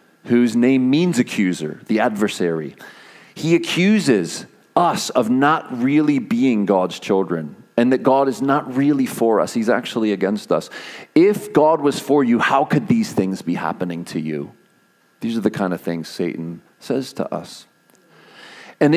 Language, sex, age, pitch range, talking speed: English, male, 40-59, 110-170 Hz, 160 wpm